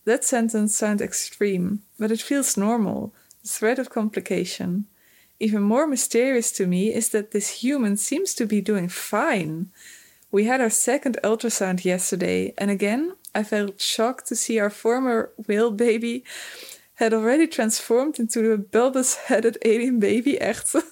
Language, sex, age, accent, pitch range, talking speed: Dutch, female, 20-39, Dutch, 200-245 Hz, 150 wpm